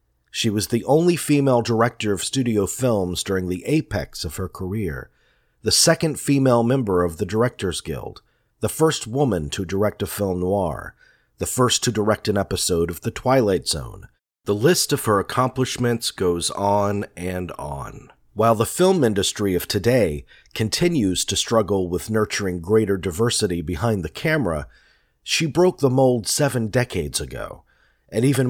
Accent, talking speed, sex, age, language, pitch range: American, 160 wpm, male, 40-59, English, 95-125 Hz